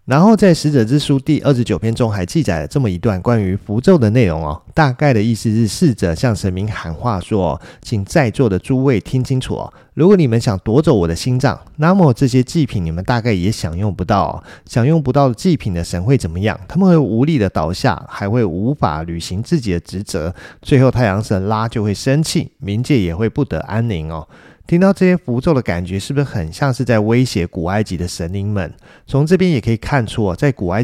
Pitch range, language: 100-140 Hz, Chinese